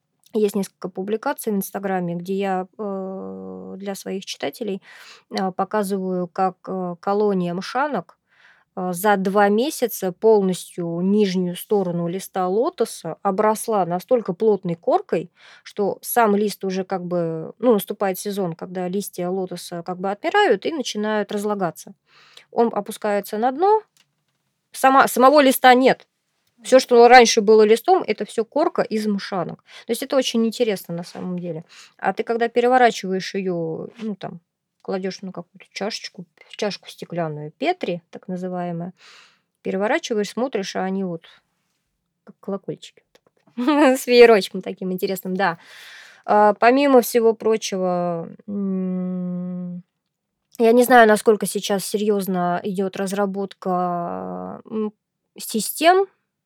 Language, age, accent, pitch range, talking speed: Russian, 20-39, native, 180-225 Hz, 115 wpm